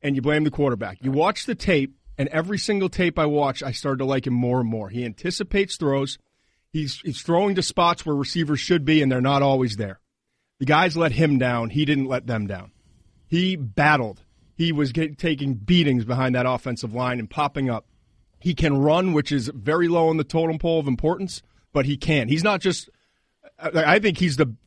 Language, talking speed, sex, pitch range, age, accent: English, 215 wpm, male, 135-165 Hz, 30-49, American